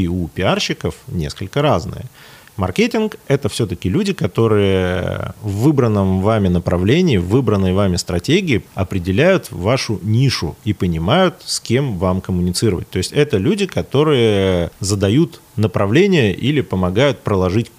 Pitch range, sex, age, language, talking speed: 95-145 Hz, male, 30-49, Russian, 125 wpm